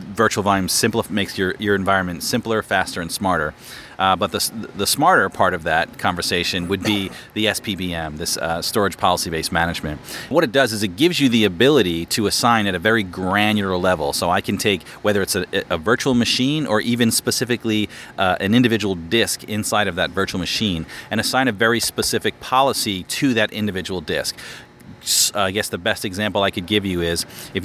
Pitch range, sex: 95-115 Hz, male